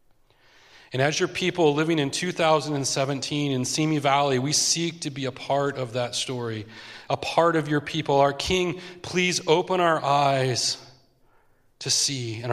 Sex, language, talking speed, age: male, English, 160 wpm, 30-49